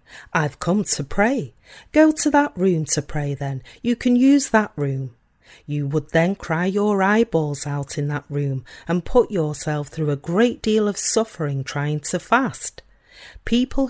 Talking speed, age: 170 wpm, 40-59